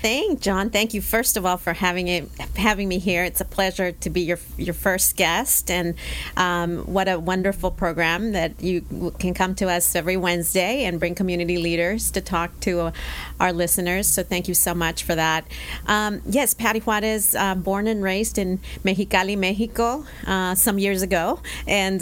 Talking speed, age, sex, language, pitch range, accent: 190 wpm, 40-59, female, English, 175-205 Hz, American